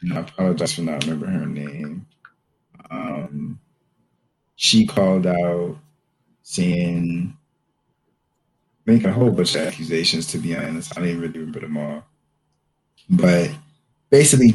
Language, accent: English, American